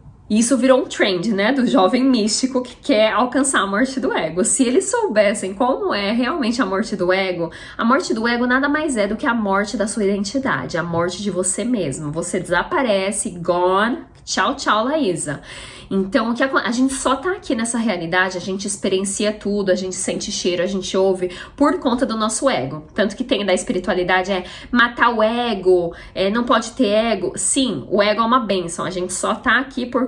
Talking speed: 200 wpm